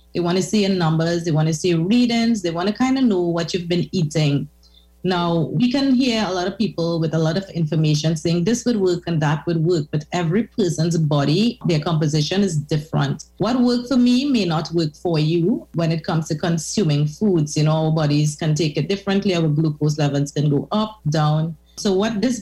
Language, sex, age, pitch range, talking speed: English, female, 30-49, 160-200 Hz, 220 wpm